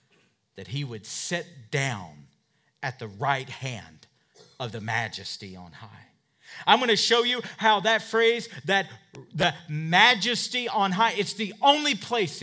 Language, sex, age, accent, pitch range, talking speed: English, male, 40-59, American, 155-240 Hz, 145 wpm